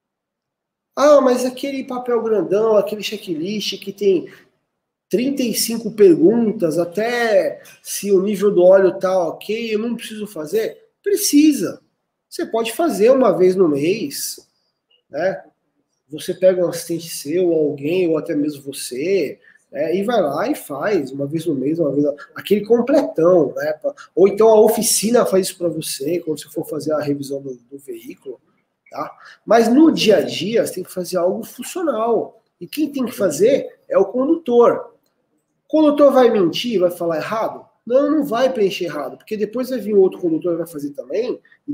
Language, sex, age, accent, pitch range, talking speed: Portuguese, male, 20-39, Brazilian, 180-270 Hz, 165 wpm